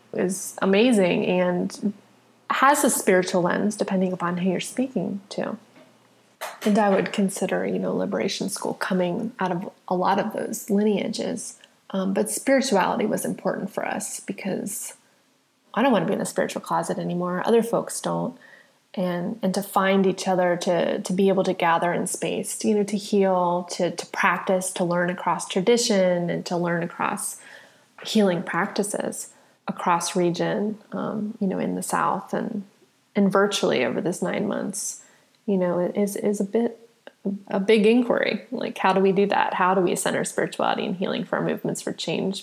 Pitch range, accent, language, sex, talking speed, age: 180-210 Hz, American, English, female, 175 wpm, 20-39